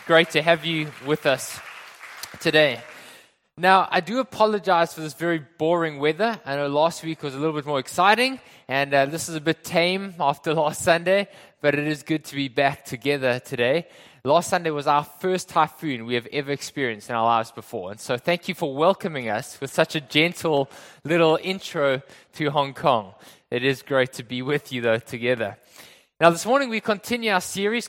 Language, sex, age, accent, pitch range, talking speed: English, male, 20-39, Australian, 140-180 Hz, 195 wpm